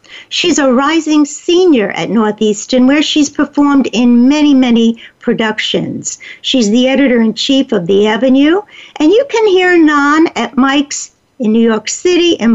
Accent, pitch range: American, 245-320 Hz